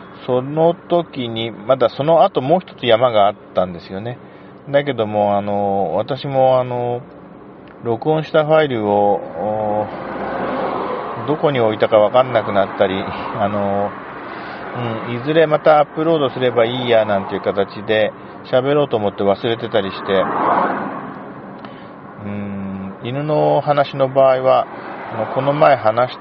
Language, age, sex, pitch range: Japanese, 40-59, male, 100-130 Hz